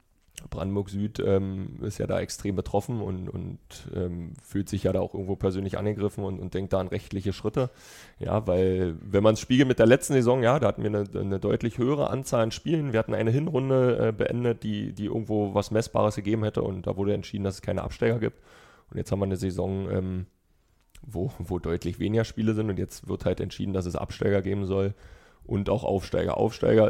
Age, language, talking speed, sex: 30-49, German, 210 wpm, male